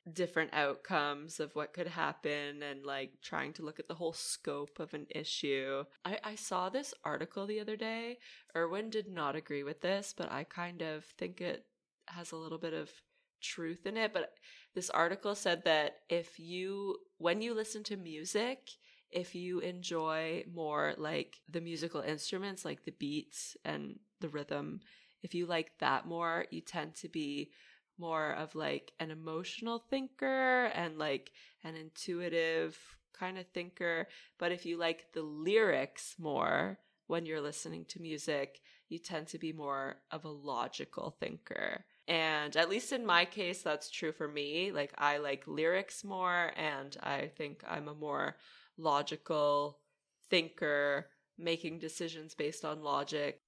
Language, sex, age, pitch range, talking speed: English, female, 20-39, 150-190 Hz, 160 wpm